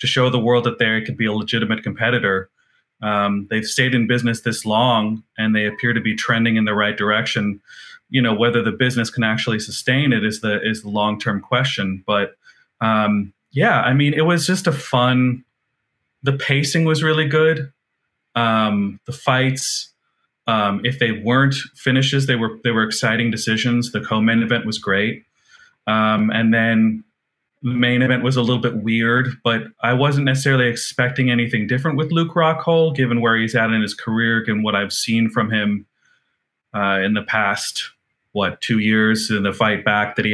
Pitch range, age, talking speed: 105-125 Hz, 30-49, 185 wpm